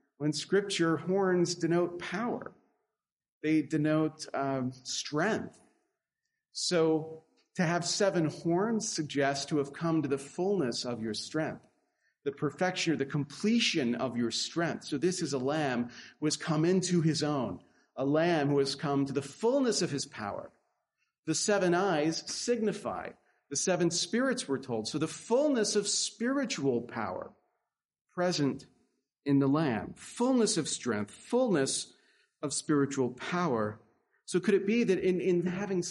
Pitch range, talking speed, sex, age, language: 135-185 Hz, 145 wpm, male, 40-59, English